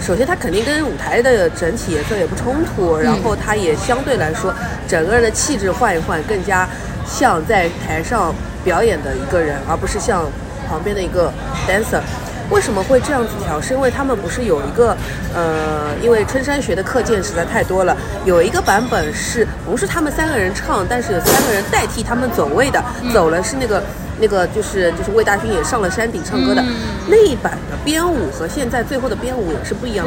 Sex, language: female, Chinese